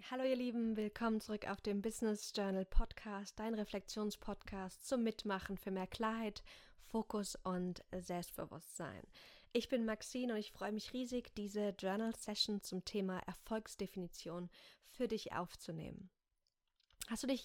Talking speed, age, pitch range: 140 wpm, 20-39, 190-225 Hz